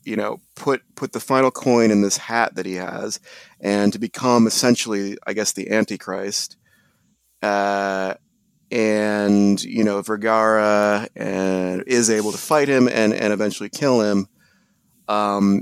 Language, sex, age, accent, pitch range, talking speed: English, male, 30-49, American, 95-120 Hz, 145 wpm